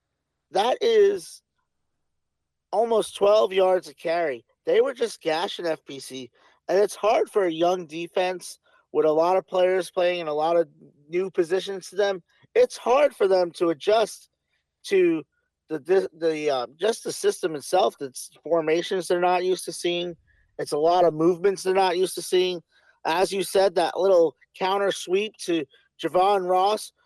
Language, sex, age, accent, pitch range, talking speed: English, male, 40-59, American, 175-225 Hz, 165 wpm